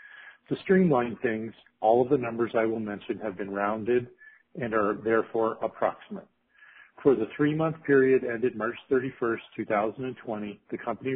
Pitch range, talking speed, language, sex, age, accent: 105-125 Hz, 145 wpm, English, male, 50-69, American